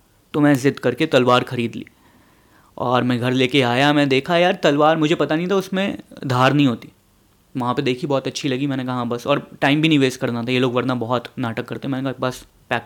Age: 20-39